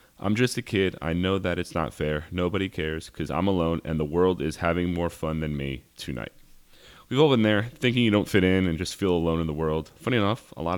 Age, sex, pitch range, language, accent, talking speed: 30-49, male, 80-110 Hz, English, American, 250 wpm